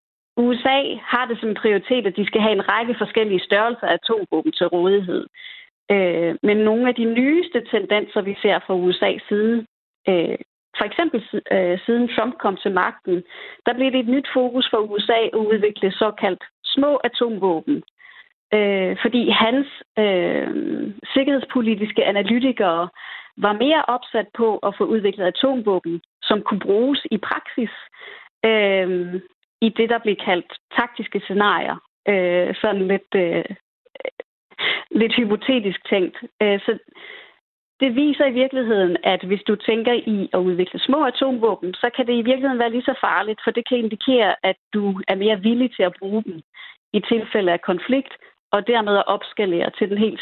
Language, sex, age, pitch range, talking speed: Danish, female, 30-49, 195-245 Hz, 150 wpm